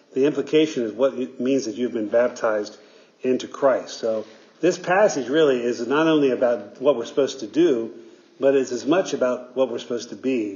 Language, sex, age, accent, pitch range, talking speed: English, male, 50-69, American, 120-150 Hz, 200 wpm